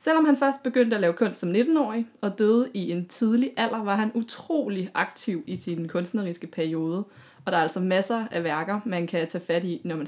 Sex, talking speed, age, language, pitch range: female, 220 wpm, 20-39, Danish, 170-225 Hz